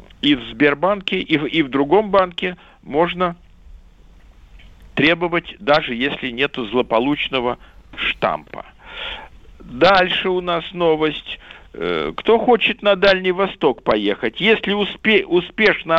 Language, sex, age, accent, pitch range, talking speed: Russian, male, 50-69, native, 140-205 Hz, 100 wpm